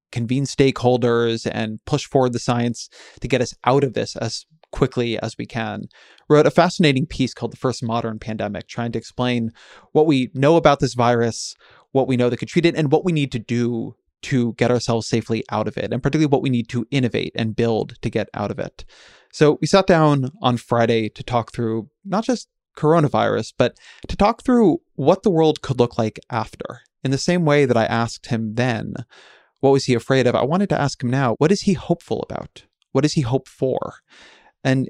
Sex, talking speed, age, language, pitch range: male, 215 wpm, 20-39, English, 115-145 Hz